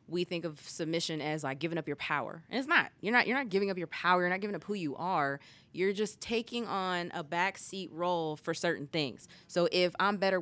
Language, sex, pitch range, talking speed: English, female, 150-180 Hz, 240 wpm